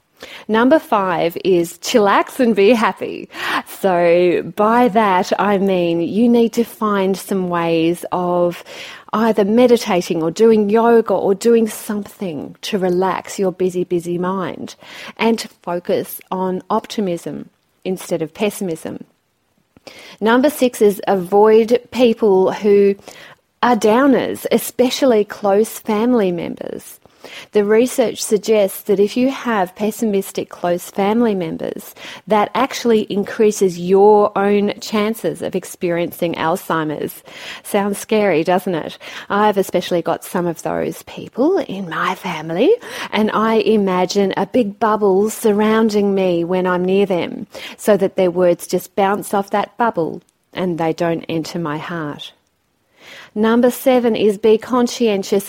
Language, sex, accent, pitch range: English, female, Australian, 180-225 Hz